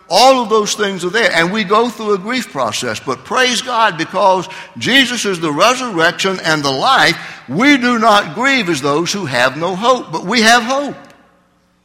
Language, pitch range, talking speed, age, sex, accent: English, 150-235 Hz, 195 wpm, 60-79, male, American